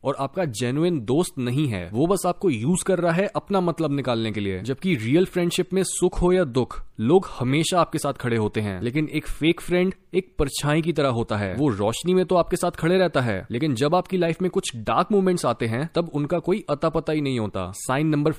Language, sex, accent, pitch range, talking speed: Hindi, male, native, 140-185 Hz, 230 wpm